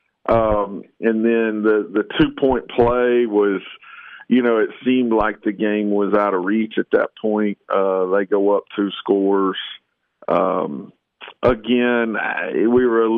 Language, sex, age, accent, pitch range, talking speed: English, male, 50-69, American, 95-115 Hz, 145 wpm